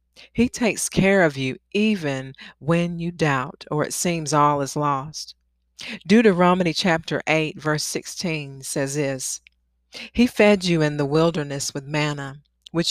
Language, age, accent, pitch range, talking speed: English, 40-59, American, 140-195 Hz, 140 wpm